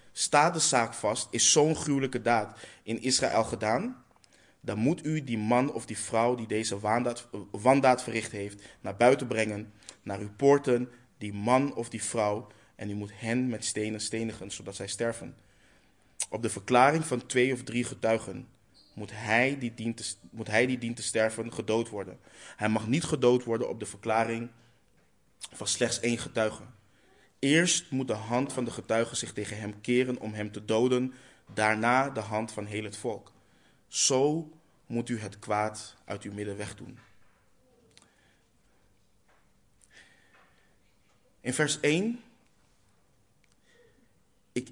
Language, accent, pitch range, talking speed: Dutch, Dutch, 105-125 Hz, 150 wpm